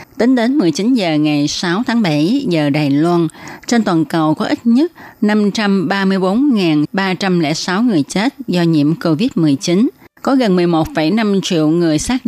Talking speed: 140 wpm